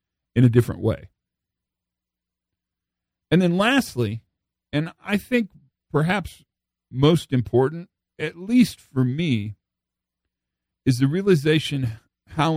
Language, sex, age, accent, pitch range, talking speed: English, male, 50-69, American, 105-145 Hz, 100 wpm